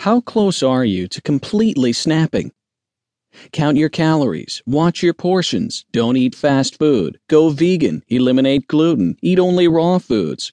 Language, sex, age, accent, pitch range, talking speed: English, male, 40-59, American, 125-165 Hz, 140 wpm